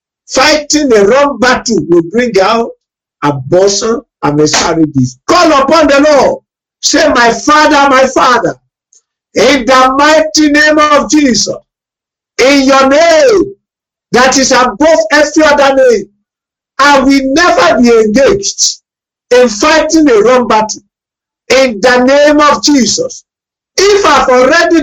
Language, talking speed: English, 130 wpm